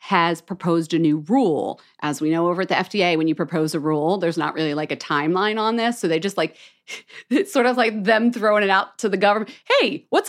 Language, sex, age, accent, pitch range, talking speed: English, female, 40-59, American, 160-215 Hz, 245 wpm